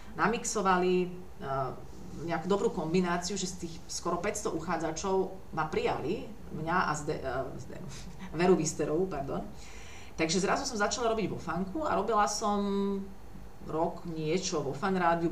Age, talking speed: 30-49, 135 wpm